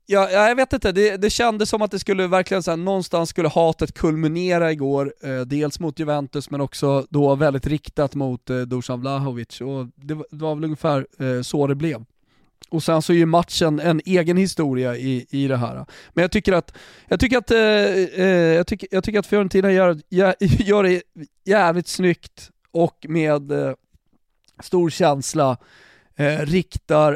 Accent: native